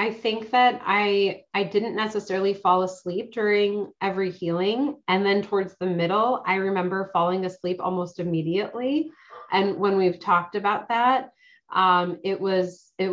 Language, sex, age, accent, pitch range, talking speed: English, female, 30-49, American, 180-205 Hz, 150 wpm